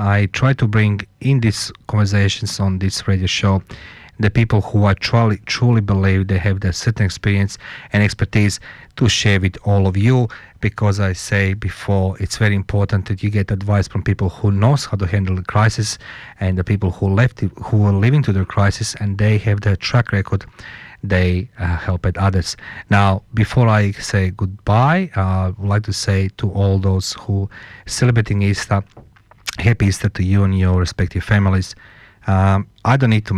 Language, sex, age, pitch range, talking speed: English, male, 40-59, 95-110 Hz, 185 wpm